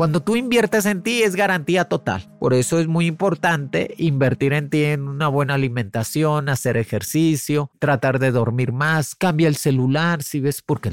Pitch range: 140-185 Hz